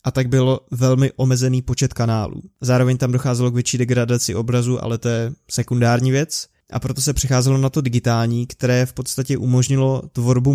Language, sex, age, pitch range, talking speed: Czech, male, 20-39, 120-130 Hz, 175 wpm